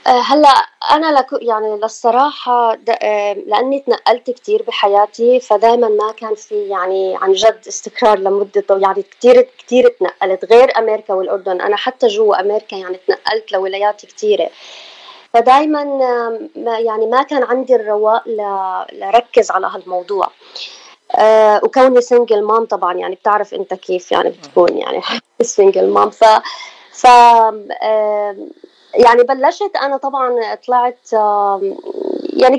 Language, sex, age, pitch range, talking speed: Arabic, female, 20-39, 210-295 Hz, 120 wpm